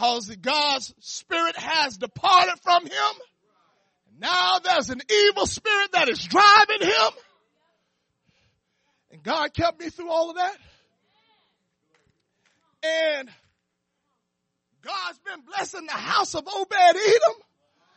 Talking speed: 105 wpm